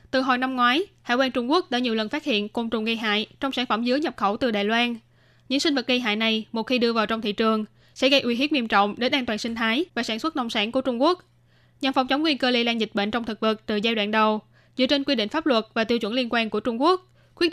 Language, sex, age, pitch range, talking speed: Vietnamese, female, 10-29, 220-275 Hz, 305 wpm